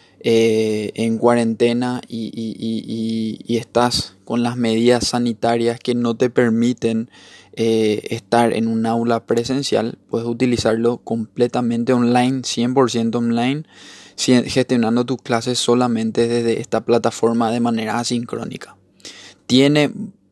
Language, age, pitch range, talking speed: Spanish, 20-39, 115-120 Hz, 110 wpm